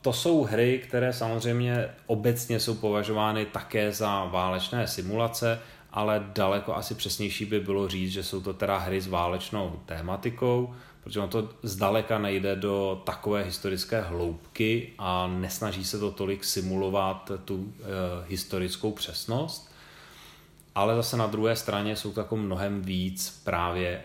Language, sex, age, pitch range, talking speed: Czech, male, 30-49, 95-115 Hz, 140 wpm